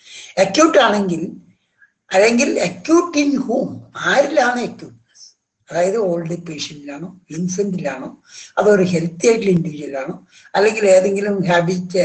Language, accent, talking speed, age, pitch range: Malayalam, native, 95 wpm, 60-79, 150-210 Hz